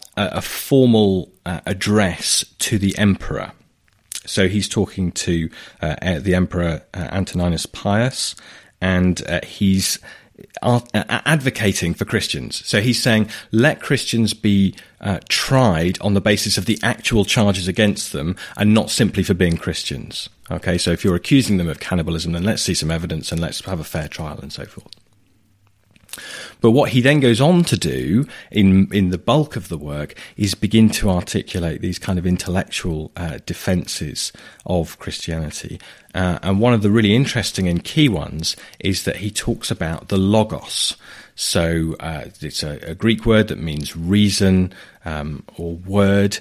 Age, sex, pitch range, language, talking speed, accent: 30-49, male, 90-110 Hz, English, 160 wpm, British